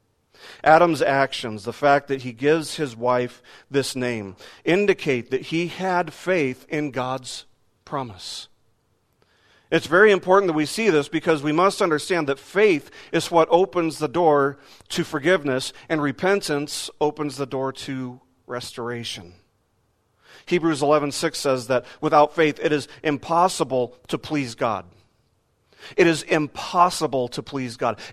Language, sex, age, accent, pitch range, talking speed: English, male, 40-59, American, 120-165 Hz, 135 wpm